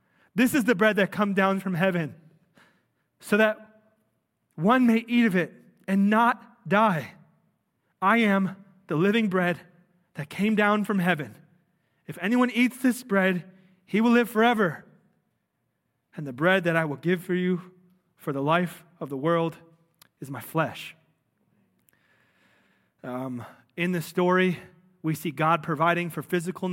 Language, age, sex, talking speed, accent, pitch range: English, 30-49, male, 150 wpm, American, 165-210 Hz